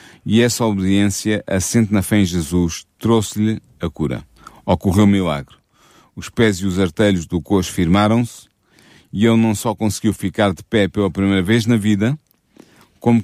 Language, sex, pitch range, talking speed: Portuguese, male, 95-115 Hz, 165 wpm